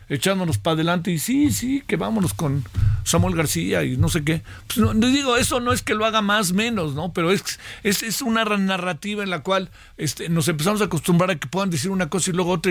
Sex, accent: male, Mexican